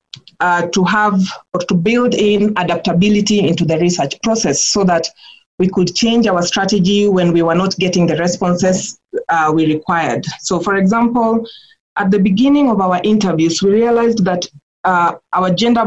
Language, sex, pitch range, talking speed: English, female, 170-210 Hz, 165 wpm